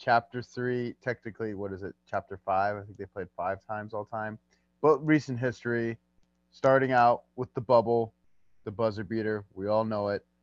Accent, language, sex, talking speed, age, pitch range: American, English, male, 180 wpm, 20-39, 105-140 Hz